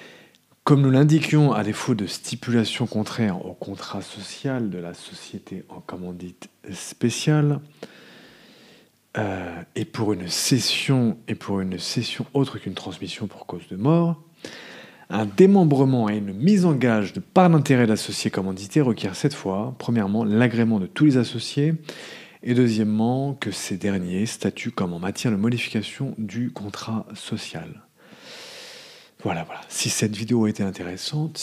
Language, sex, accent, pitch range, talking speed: English, male, French, 100-140 Hz, 145 wpm